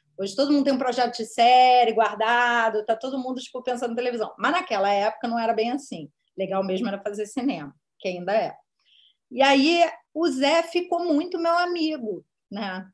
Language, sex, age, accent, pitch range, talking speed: Portuguese, female, 30-49, Brazilian, 215-275 Hz, 180 wpm